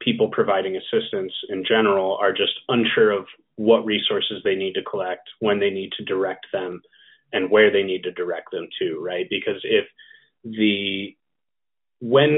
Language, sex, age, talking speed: English, male, 30-49, 165 wpm